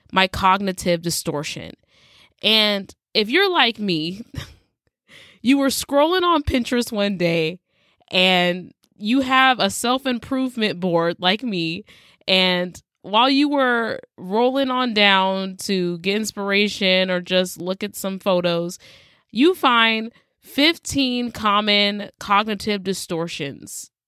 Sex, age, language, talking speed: female, 20-39, English, 110 wpm